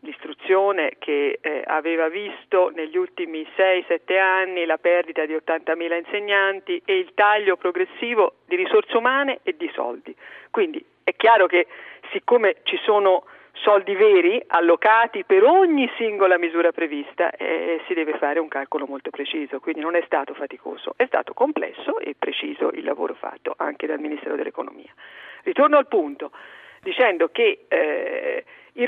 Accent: native